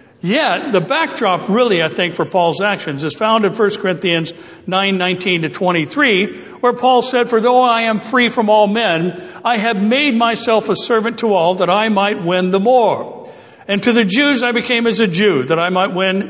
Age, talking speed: 60-79, 205 wpm